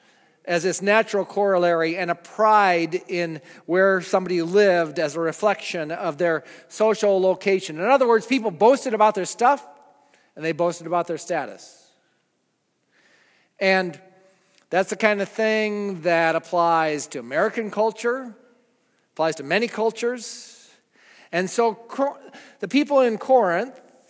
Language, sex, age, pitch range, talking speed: English, male, 40-59, 175-235 Hz, 130 wpm